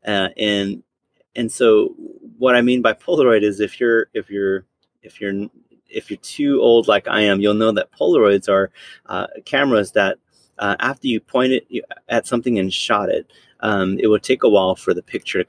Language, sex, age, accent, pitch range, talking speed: English, male, 30-49, American, 105-145 Hz, 200 wpm